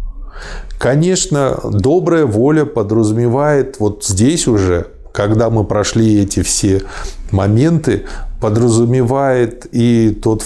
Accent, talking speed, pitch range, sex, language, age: native, 90 wpm, 100-140 Hz, male, Russian, 20-39